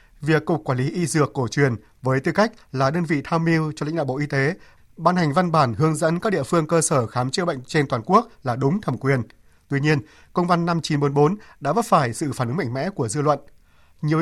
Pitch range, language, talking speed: 130-170 Hz, Vietnamese, 255 wpm